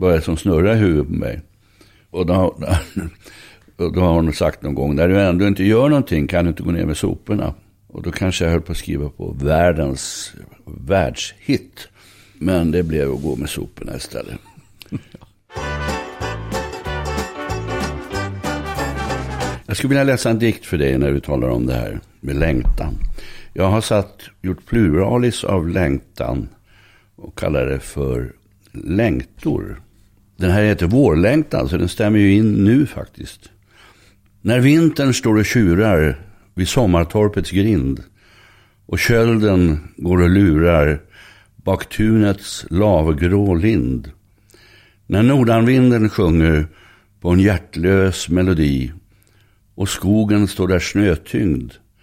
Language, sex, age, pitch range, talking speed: English, male, 60-79, 80-105 Hz, 130 wpm